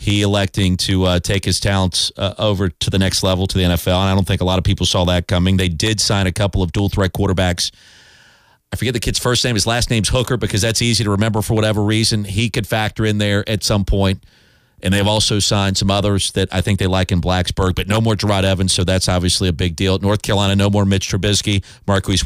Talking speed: 250 wpm